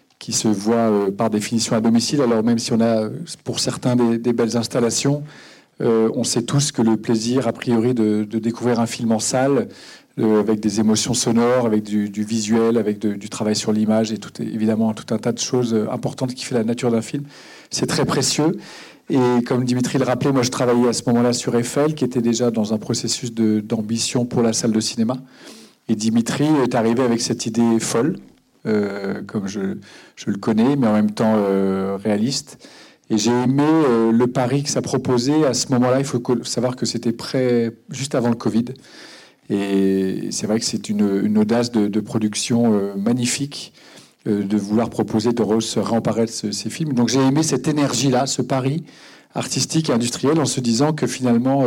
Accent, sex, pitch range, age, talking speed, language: French, male, 110-125 Hz, 40-59, 205 wpm, French